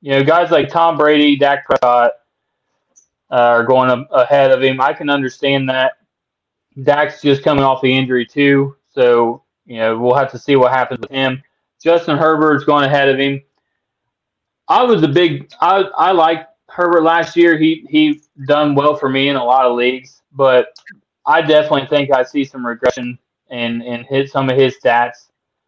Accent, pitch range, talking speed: American, 125-150 Hz, 180 wpm